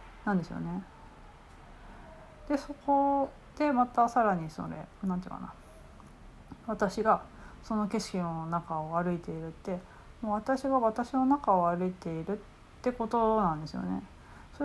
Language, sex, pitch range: Japanese, female, 180-245 Hz